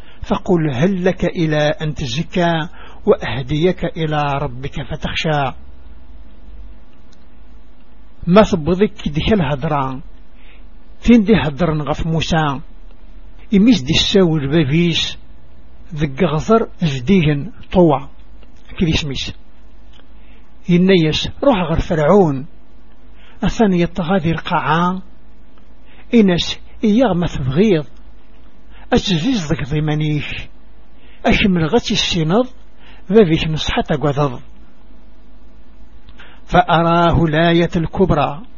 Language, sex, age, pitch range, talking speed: Arabic, male, 60-79, 145-185 Hz, 80 wpm